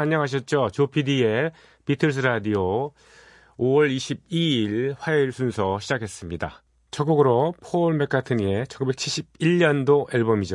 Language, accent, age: Korean, native, 40-59